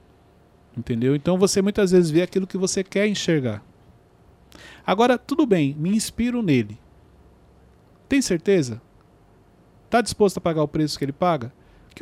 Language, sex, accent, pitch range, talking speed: Portuguese, male, Brazilian, 140-230 Hz, 145 wpm